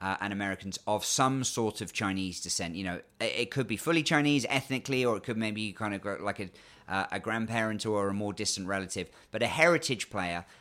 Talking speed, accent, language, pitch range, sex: 225 wpm, British, English, 100-130 Hz, male